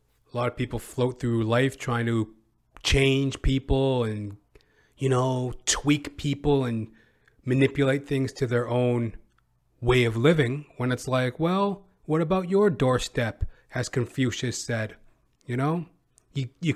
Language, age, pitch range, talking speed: English, 30-49, 120-155 Hz, 145 wpm